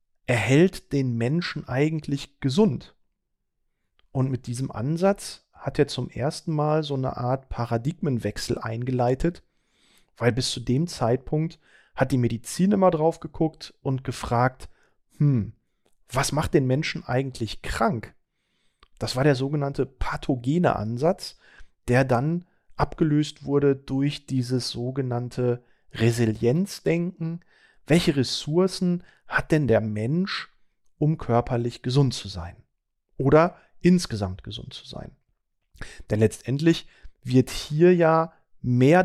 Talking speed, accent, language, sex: 115 wpm, German, German, male